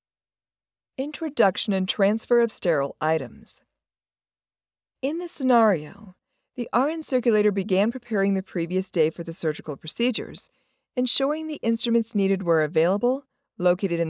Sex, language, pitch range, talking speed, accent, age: female, English, 165-240 Hz, 125 wpm, American, 40-59